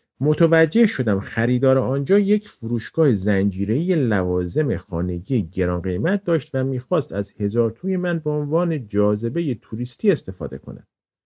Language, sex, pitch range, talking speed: Persian, male, 100-150 Hz, 130 wpm